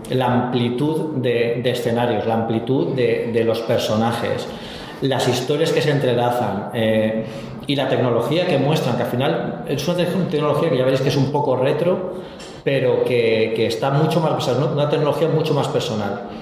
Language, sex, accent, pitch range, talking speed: English, male, Spanish, 120-150 Hz, 170 wpm